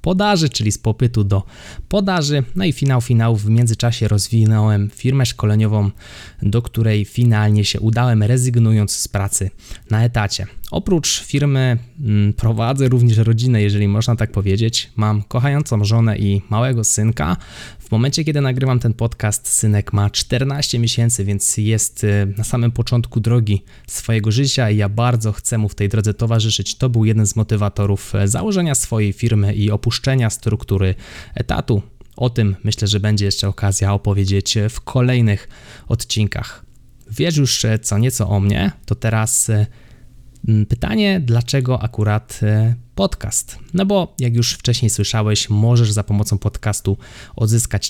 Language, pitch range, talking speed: Polish, 105-120 Hz, 145 wpm